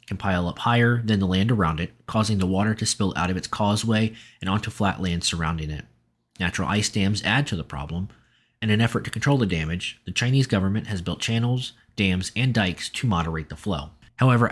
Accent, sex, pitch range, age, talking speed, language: American, male, 90-115 Hz, 20-39, 215 wpm, English